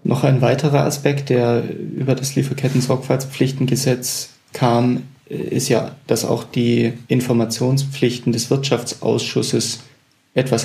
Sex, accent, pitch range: male, German, 115-130 Hz